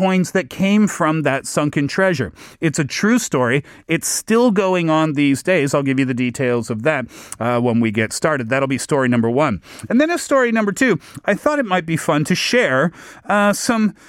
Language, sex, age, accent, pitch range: Korean, male, 40-59, American, 130-190 Hz